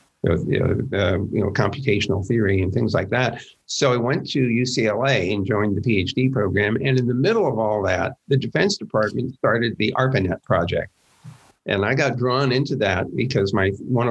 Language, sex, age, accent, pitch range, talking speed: English, male, 50-69, American, 105-130 Hz, 185 wpm